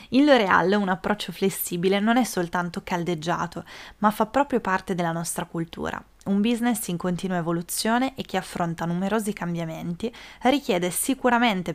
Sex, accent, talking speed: female, native, 145 wpm